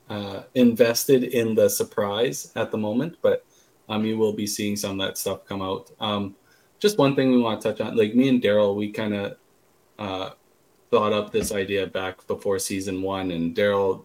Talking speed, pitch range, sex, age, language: 200 wpm, 100-125 Hz, male, 20-39, English